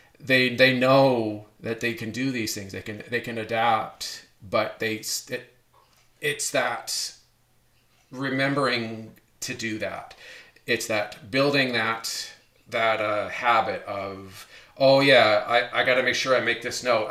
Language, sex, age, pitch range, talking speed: English, male, 40-59, 110-135 Hz, 150 wpm